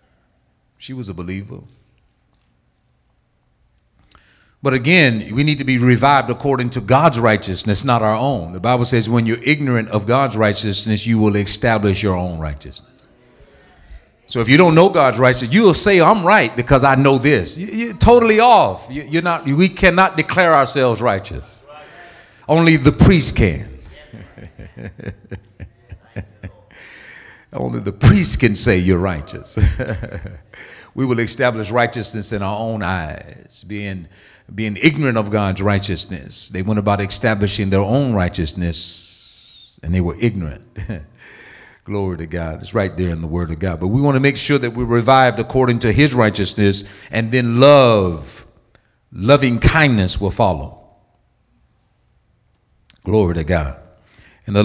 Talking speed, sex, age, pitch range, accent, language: 145 wpm, male, 50-69, 95-130 Hz, American, English